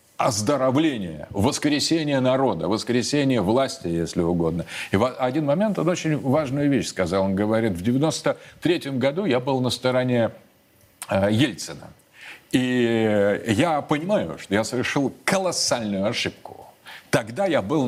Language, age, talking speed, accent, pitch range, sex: Russian, 40-59, 130 wpm, native, 105-140 Hz, male